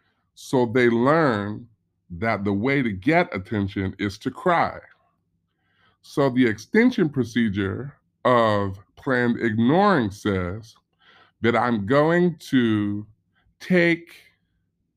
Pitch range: 100-145 Hz